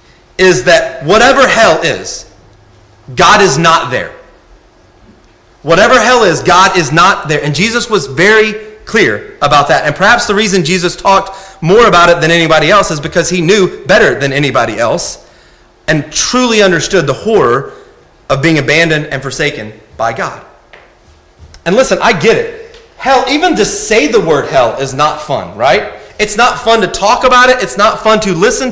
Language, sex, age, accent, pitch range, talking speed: English, male, 30-49, American, 155-230 Hz, 175 wpm